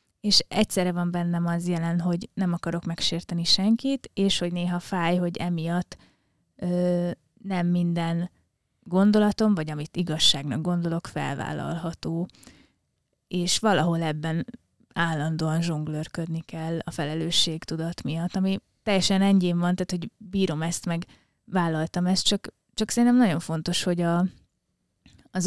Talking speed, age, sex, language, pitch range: 125 wpm, 20-39, female, Hungarian, 160-185 Hz